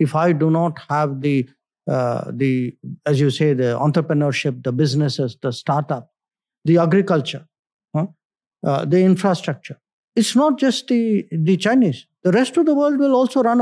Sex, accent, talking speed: male, Indian, 165 wpm